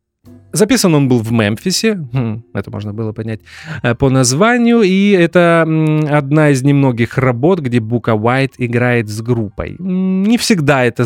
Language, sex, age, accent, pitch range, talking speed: Russian, male, 20-39, native, 110-150 Hz, 140 wpm